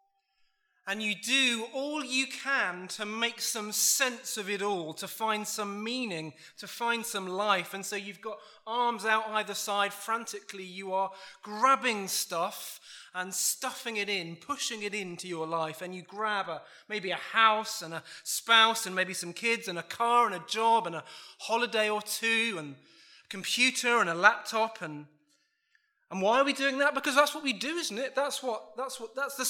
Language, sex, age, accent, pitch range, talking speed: English, male, 20-39, British, 185-245 Hz, 190 wpm